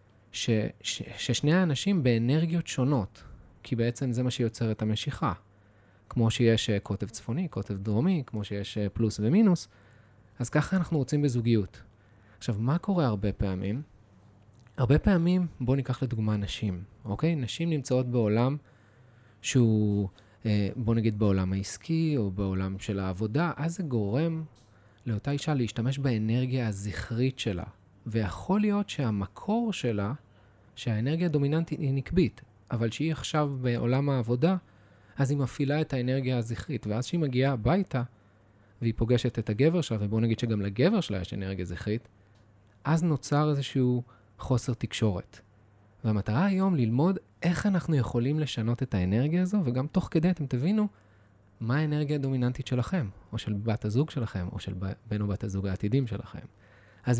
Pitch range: 105-145 Hz